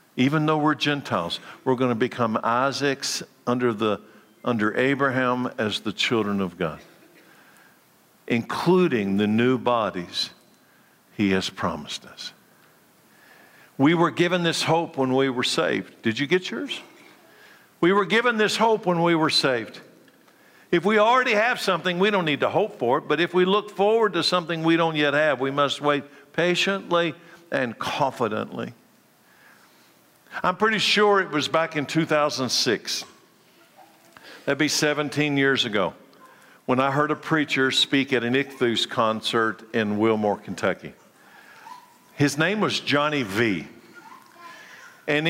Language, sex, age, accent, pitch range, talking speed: English, male, 60-79, American, 125-175 Hz, 145 wpm